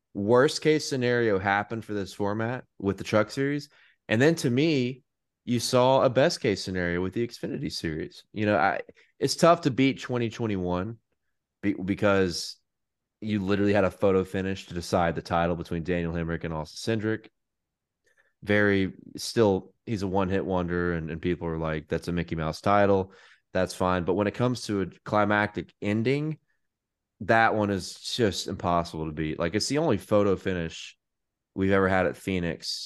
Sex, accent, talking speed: male, American, 175 wpm